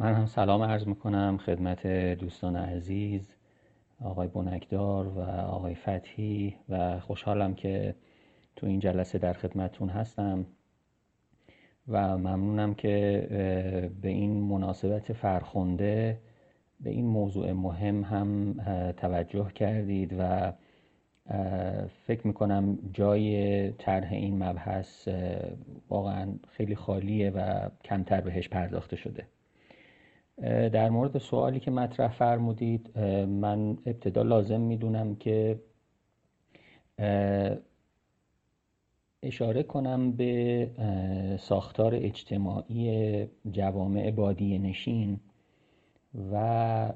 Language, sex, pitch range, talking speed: English, male, 95-110 Hz, 90 wpm